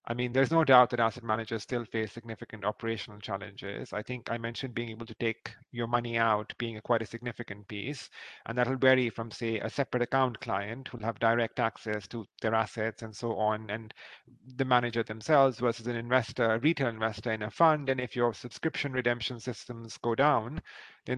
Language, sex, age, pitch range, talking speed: English, male, 30-49, 110-125 Hz, 205 wpm